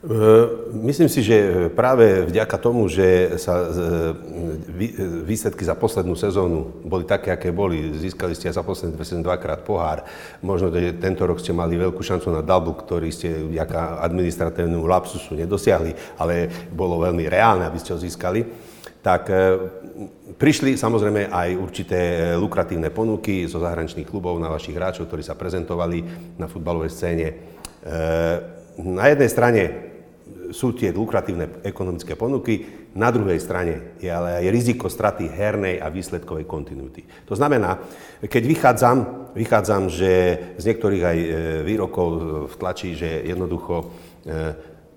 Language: Slovak